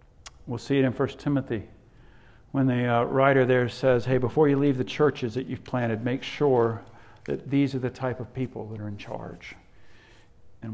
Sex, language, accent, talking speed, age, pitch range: male, English, American, 195 wpm, 50-69, 95-130 Hz